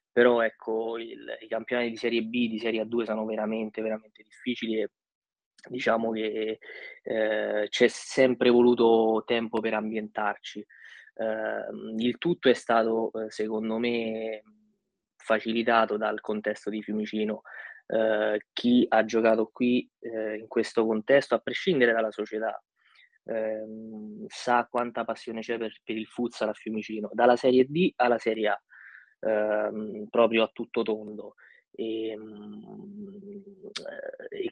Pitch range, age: 110-120 Hz, 20-39